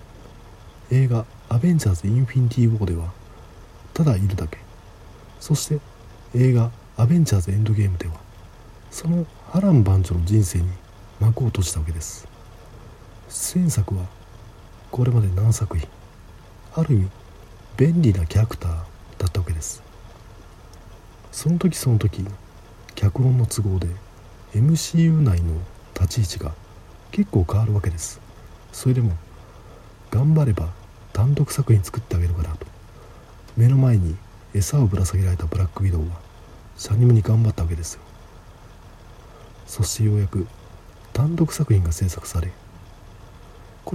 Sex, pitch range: male, 95-115 Hz